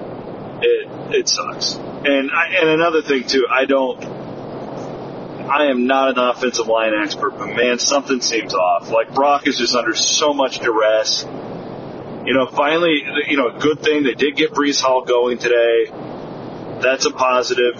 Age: 30-49